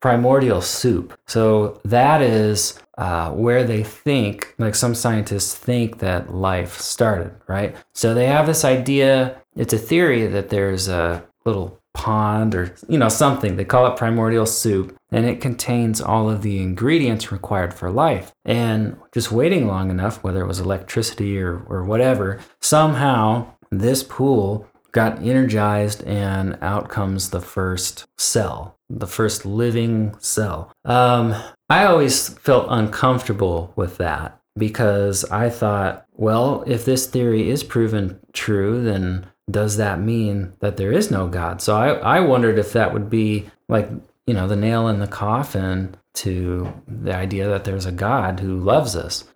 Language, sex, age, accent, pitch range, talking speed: English, male, 30-49, American, 100-120 Hz, 155 wpm